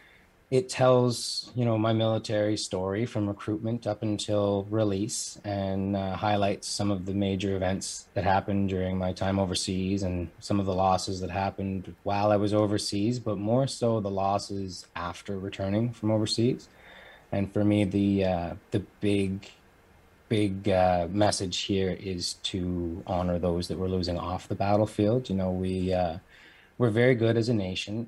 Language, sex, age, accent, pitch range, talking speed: English, male, 30-49, American, 95-105 Hz, 165 wpm